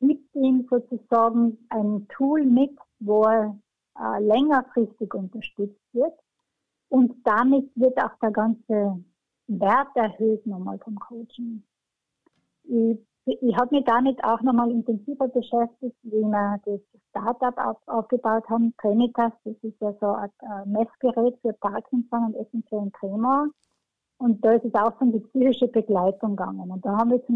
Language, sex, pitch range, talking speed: German, female, 215-255 Hz, 145 wpm